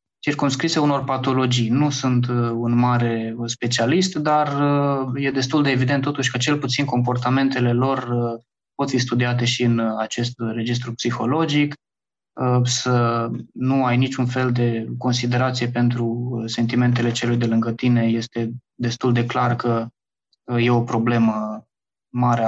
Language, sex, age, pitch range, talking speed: Romanian, male, 20-39, 120-140 Hz, 130 wpm